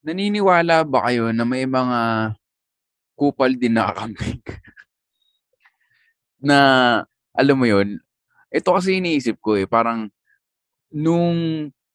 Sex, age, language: male, 20-39, English